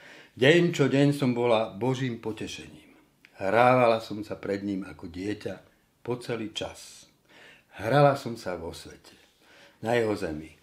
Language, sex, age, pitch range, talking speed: Slovak, male, 60-79, 95-130 Hz, 140 wpm